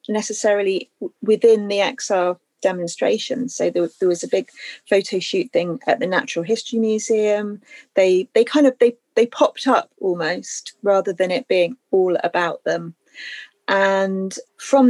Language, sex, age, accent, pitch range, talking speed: English, female, 30-49, British, 175-220 Hz, 155 wpm